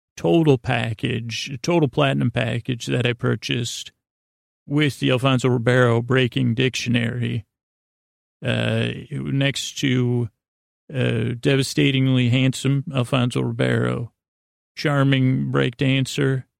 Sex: male